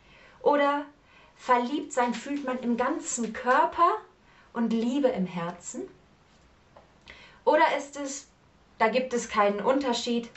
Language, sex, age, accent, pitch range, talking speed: German, female, 30-49, German, 195-250 Hz, 115 wpm